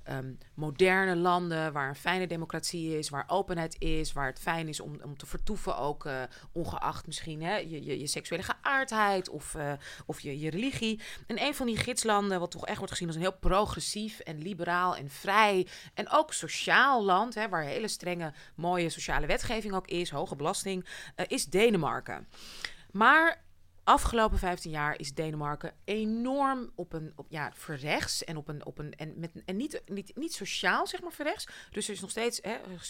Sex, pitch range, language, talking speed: female, 155-200 Hz, Dutch, 185 wpm